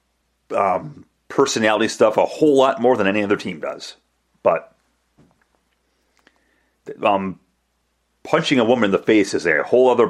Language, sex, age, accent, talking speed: English, male, 40-59, American, 145 wpm